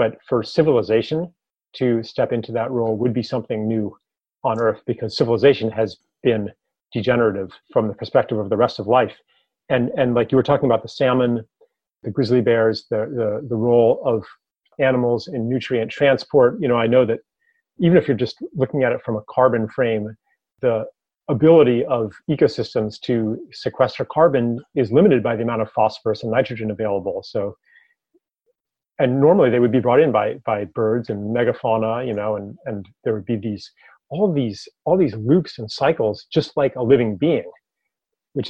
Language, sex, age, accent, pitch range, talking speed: English, male, 30-49, American, 110-135 Hz, 180 wpm